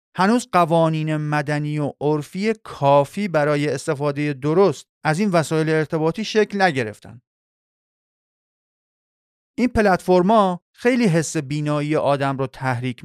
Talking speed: 105 wpm